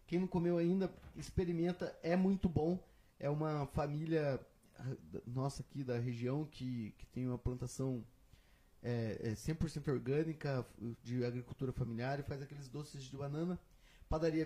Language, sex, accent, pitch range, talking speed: Portuguese, male, Brazilian, 130-165 Hz, 140 wpm